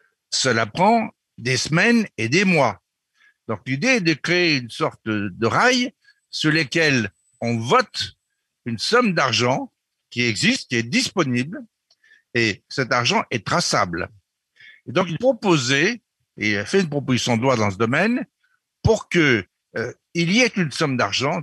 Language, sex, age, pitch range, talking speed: French, male, 60-79, 115-180 Hz, 155 wpm